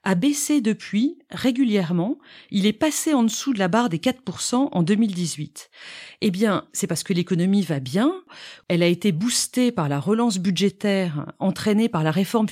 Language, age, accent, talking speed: French, 40-59, French, 175 wpm